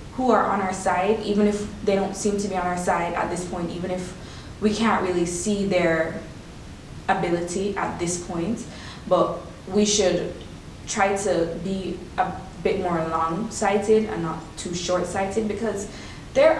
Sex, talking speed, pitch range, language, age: female, 165 wpm, 180-245 Hz, English, 20-39